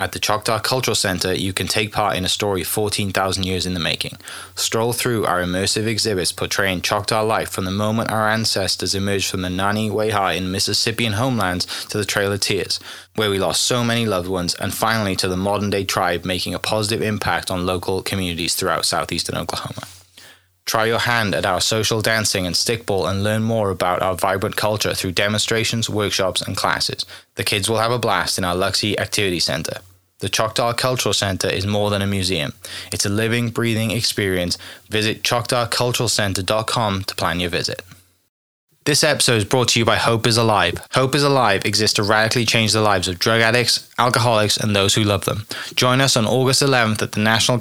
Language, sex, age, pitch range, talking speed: English, male, 20-39, 95-115 Hz, 195 wpm